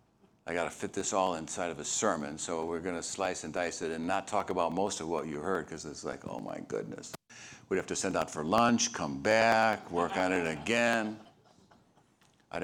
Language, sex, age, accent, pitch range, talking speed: English, male, 60-79, American, 80-110 Hz, 225 wpm